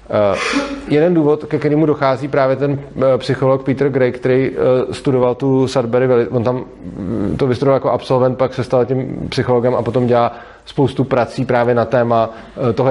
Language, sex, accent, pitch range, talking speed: Czech, male, native, 130-145 Hz, 180 wpm